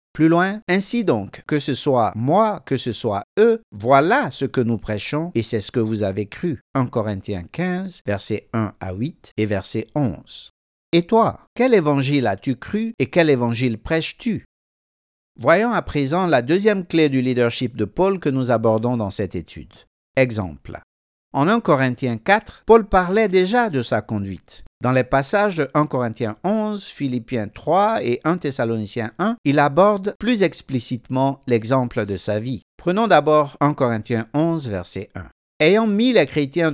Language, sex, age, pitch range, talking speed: French, male, 50-69, 110-165 Hz, 170 wpm